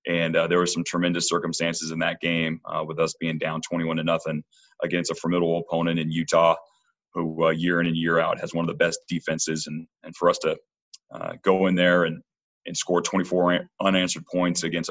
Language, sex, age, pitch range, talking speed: English, male, 30-49, 80-90 Hz, 215 wpm